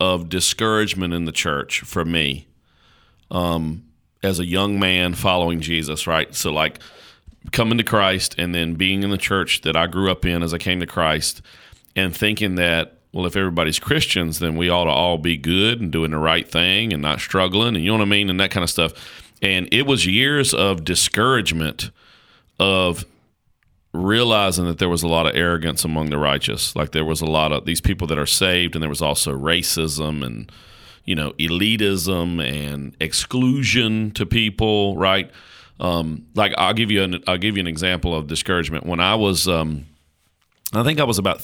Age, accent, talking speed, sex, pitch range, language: 40-59, American, 195 wpm, male, 80-100 Hz, English